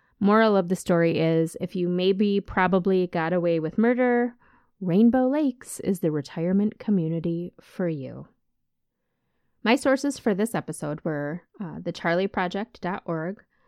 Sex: female